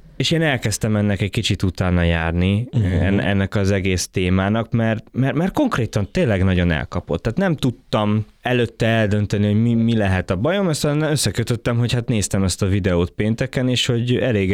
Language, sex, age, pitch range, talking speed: Hungarian, male, 20-39, 95-130 Hz, 175 wpm